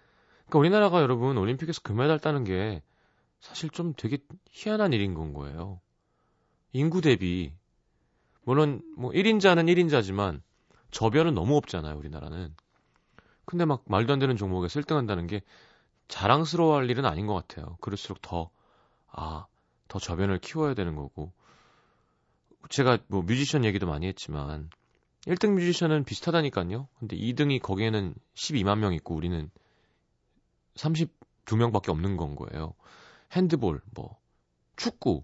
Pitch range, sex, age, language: 90-150 Hz, male, 30-49, Korean